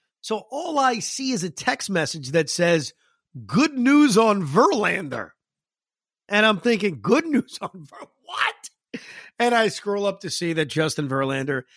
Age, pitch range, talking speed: 50-69, 150-210 Hz, 160 wpm